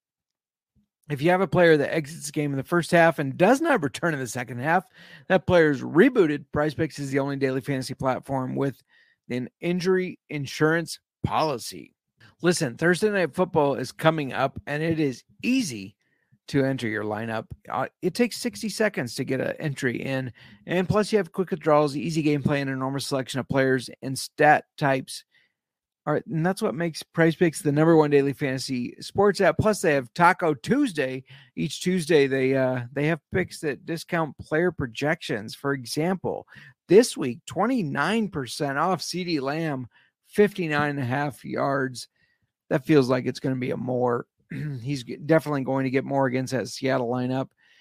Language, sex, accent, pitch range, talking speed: English, male, American, 135-170 Hz, 175 wpm